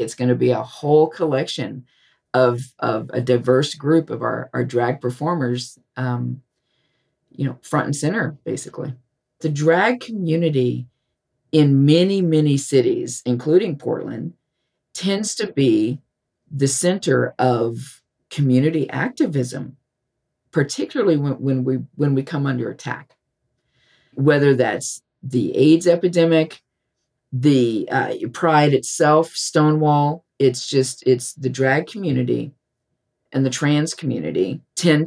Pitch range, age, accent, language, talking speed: 125-155 Hz, 50-69, American, English, 120 wpm